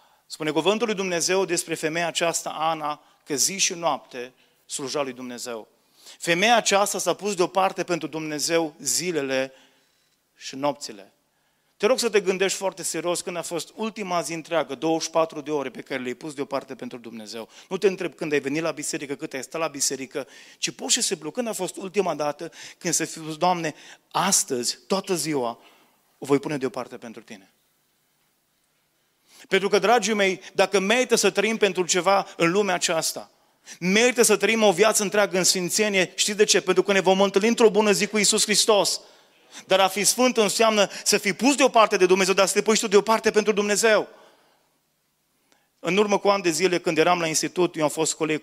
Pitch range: 145-200 Hz